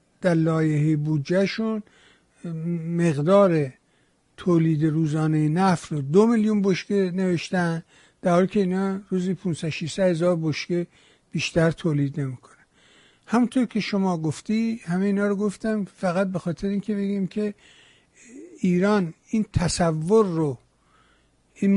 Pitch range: 160-200 Hz